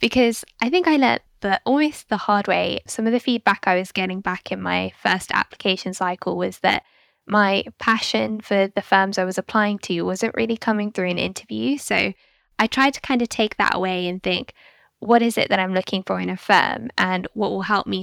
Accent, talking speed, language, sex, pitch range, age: British, 220 wpm, English, female, 185-215 Hz, 10-29